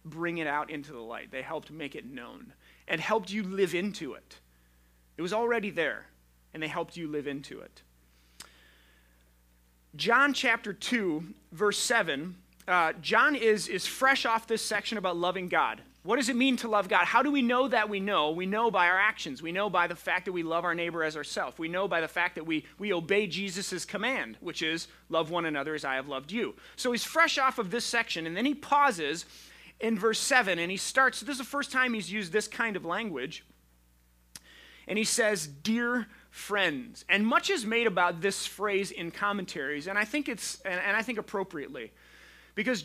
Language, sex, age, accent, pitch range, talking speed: English, male, 30-49, American, 160-235 Hz, 205 wpm